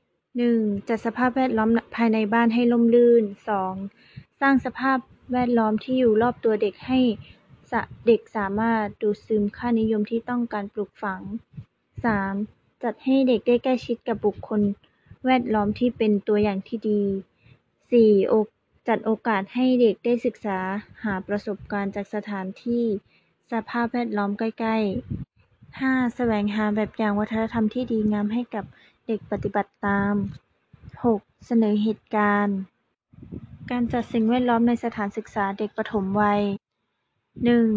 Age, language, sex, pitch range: 20-39, Thai, female, 210-240 Hz